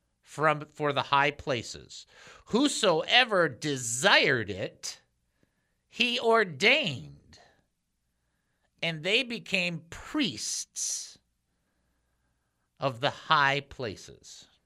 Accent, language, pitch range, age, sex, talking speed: American, English, 135-190 Hz, 50-69, male, 75 wpm